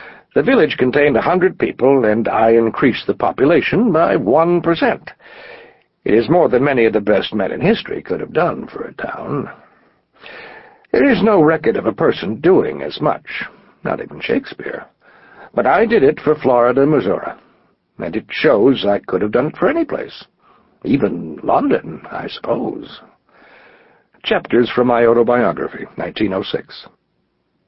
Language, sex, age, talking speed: English, male, 60-79, 155 wpm